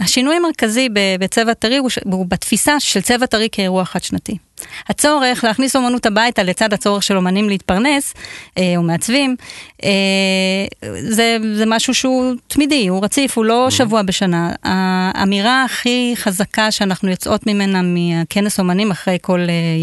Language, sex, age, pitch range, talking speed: Hebrew, female, 30-49, 190-240 Hz, 140 wpm